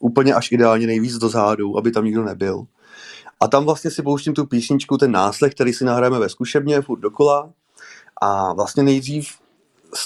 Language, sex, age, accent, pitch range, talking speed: Czech, male, 30-49, native, 115-135 Hz, 180 wpm